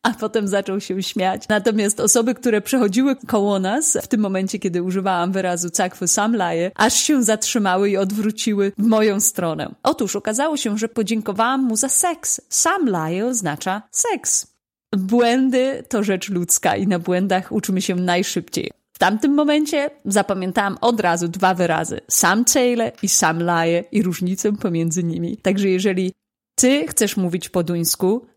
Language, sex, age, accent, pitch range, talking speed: Polish, female, 30-49, native, 185-230 Hz, 155 wpm